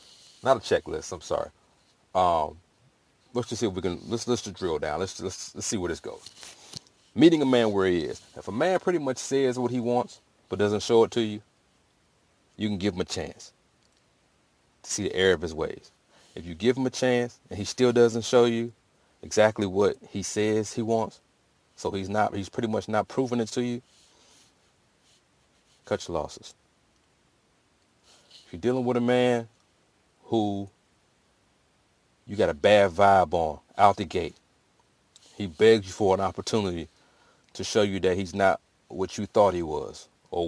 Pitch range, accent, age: 95-120 Hz, American, 30-49